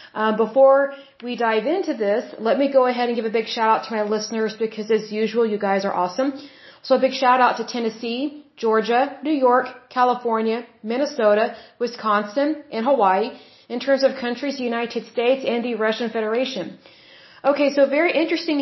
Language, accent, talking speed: English, American, 175 wpm